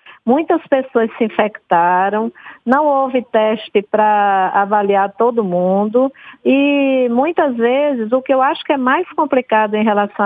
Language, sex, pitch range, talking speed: Portuguese, female, 220-265 Hz, 140 wpm